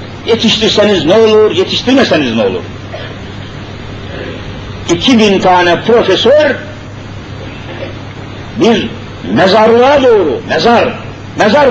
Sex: male